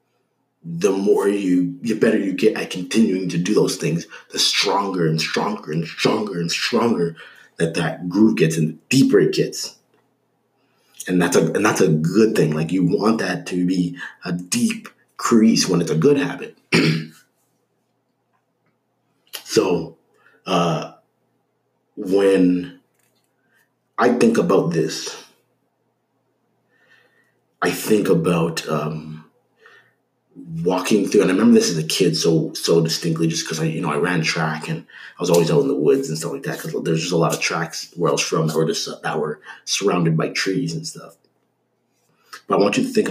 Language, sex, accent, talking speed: English, male, American, 170 wpm